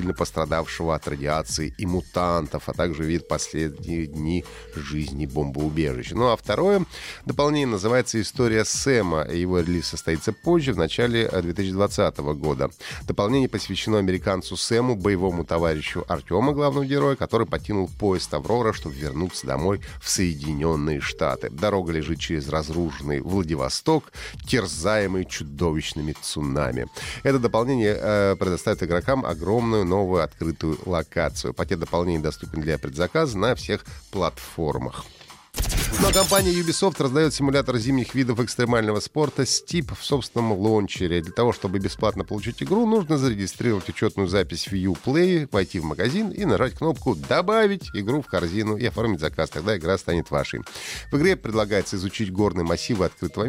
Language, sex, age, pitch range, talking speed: Russian, male, 30-49, 85-120 Hz, 135 wpm